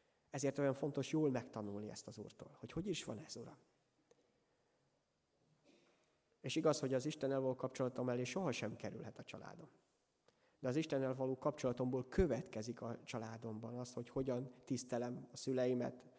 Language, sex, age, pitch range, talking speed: Hungarian, male, 30-49, 125-150 Hz, 150 wpm